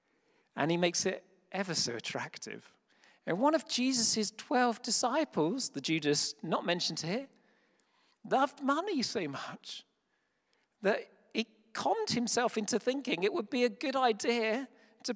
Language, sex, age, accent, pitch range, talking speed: English, male, 40-59, British, 165-255 Hz, 140 wpm